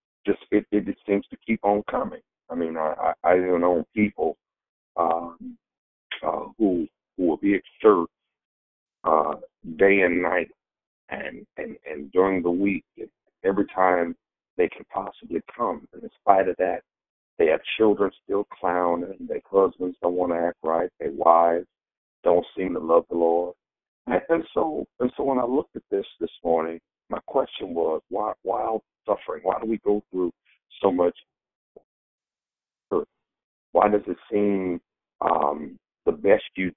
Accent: American